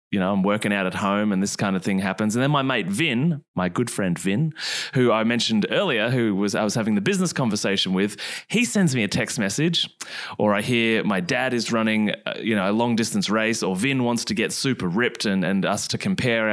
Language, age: English, 20-39